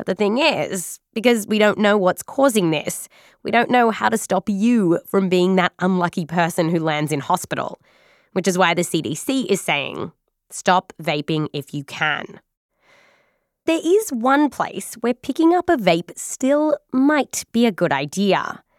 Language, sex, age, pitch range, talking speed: English, female, 20-39, 185-265 Hz, 170 wpm